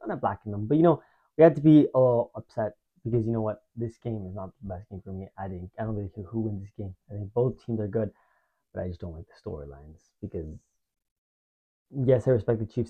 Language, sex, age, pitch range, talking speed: English, male, 20-39, 110-150 Hz, 260 wpm